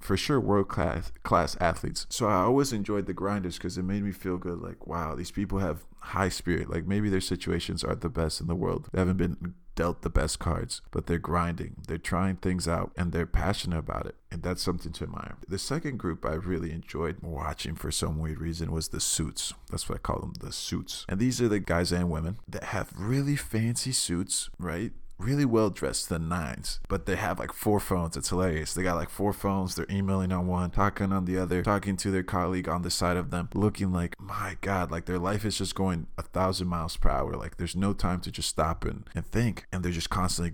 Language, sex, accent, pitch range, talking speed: English, male, American, 85-100 Hz, 230 wpm